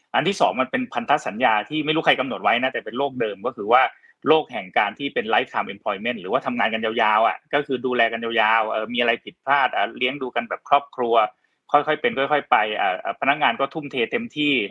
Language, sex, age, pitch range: Thai, male, 20-39, 120-155 Hz